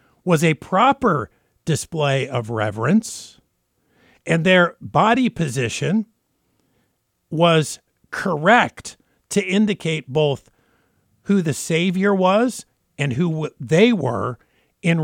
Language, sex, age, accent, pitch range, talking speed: English, male, 50-69, American, 145-190 Hz, 95 wpm